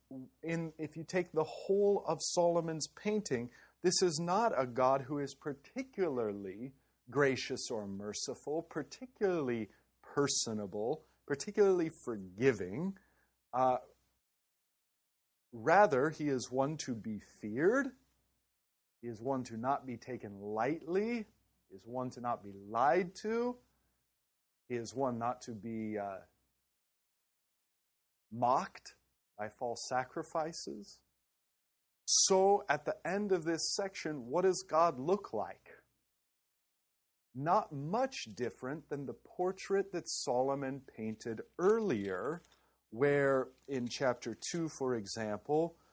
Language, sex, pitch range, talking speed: English, male, 115-165 Hz, 110 wpm